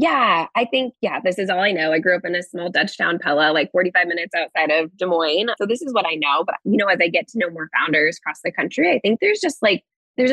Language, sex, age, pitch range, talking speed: English, female, 20-39, 160-205 Hz, 290 wpm